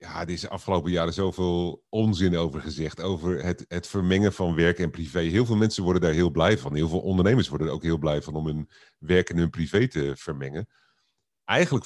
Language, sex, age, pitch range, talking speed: Dutch, male, 30-49, 85-110 Hz, 225 wpm